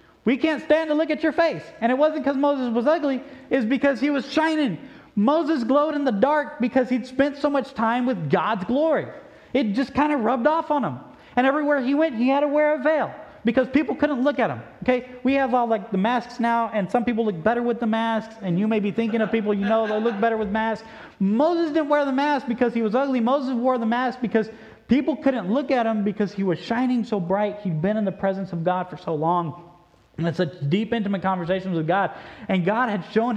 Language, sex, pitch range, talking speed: English, male, 170-265 Hz, 240 wpm